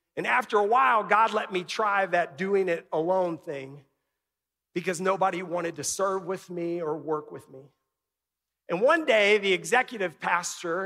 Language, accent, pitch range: English, American, 160-225 Hz